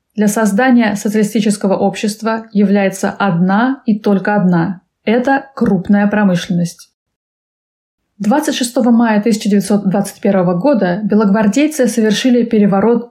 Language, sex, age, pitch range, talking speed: Russian, female, 20-39, 200-245 Hz, 85 wpm